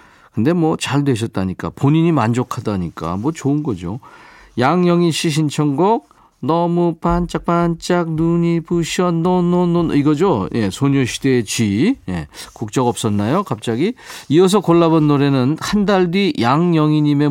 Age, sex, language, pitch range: 40-59, male, Korean, 115-165 Hz